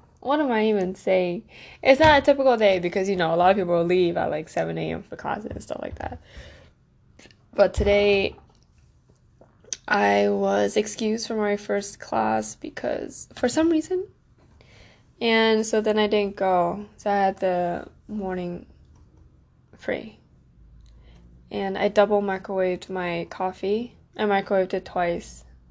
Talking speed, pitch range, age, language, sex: 145 wpm, 165-210 Hz, 10-29, English, female